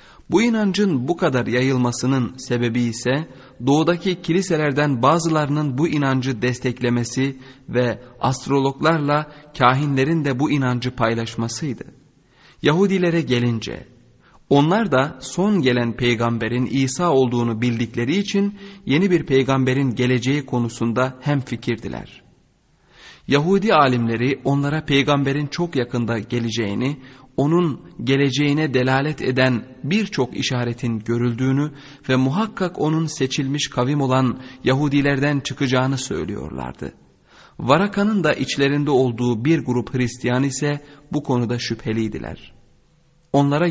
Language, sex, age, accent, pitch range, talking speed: Turkish, male, 40-59, native, 120-150 Hz, 100 wpm